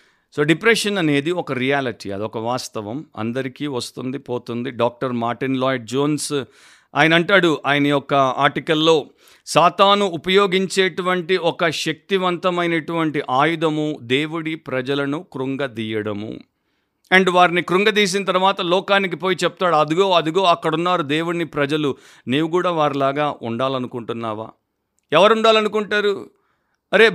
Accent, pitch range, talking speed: native, 140-195 Hz, 100 wpm